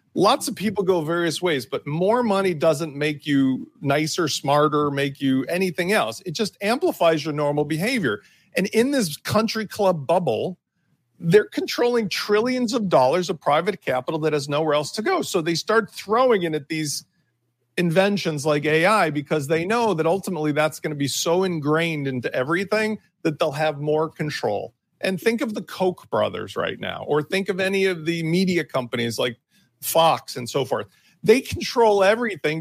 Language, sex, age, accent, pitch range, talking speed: English, male, 40-59, American, 150-195 Hz, 175 wpm